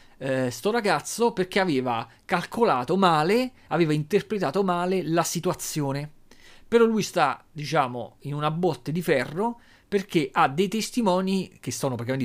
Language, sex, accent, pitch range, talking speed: Italian, male, native, 130-180 Hz, 135 wpm